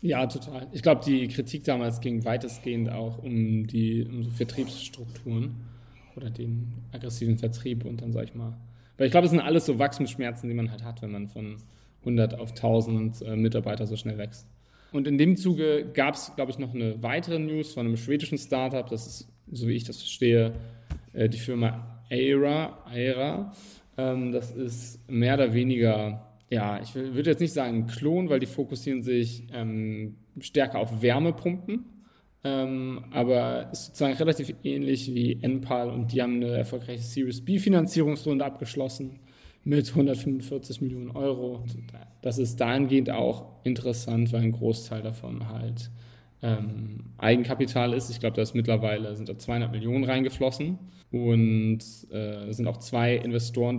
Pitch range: 115-135 Hz